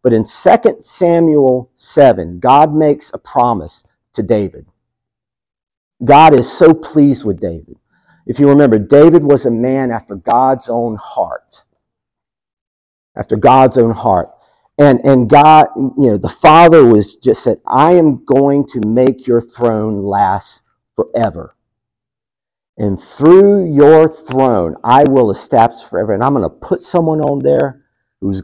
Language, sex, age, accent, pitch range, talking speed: English, male, 50-69, American, 105-145 Hz, 145 wpm